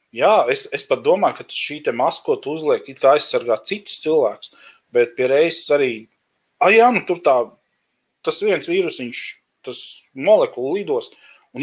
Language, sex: English, male